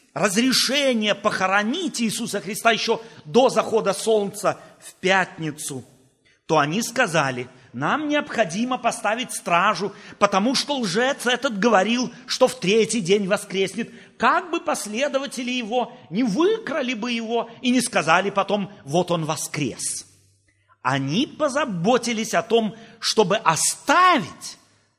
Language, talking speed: Russian, 115 wpm